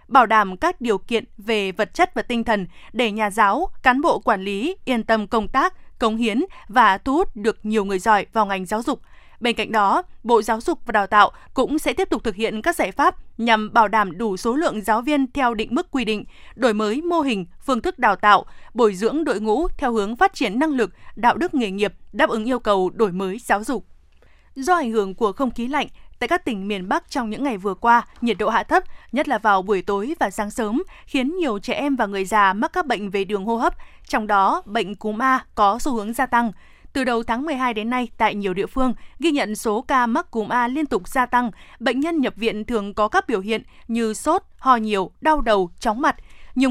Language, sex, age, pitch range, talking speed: Vietnamese, female, 20-39, 215-270 Hz, 240 wpm